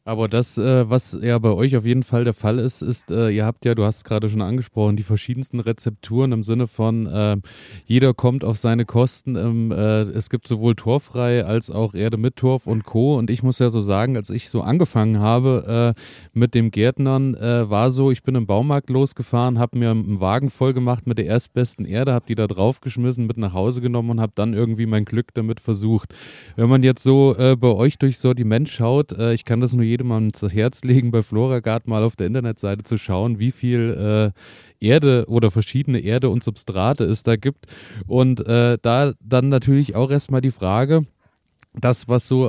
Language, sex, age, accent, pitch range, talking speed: German, male, 30-49, German, 110-130 Hz, 210 wpm